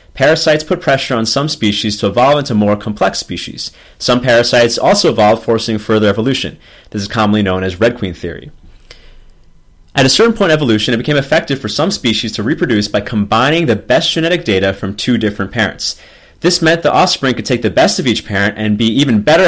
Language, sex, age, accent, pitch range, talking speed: English, male, 30-49, American, 100-125 Hz, 205 wpm